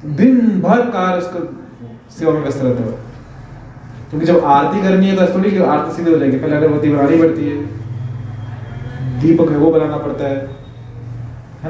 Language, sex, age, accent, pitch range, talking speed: Hindi, male, 20-39, native, 120-165 Hz, 150 wpm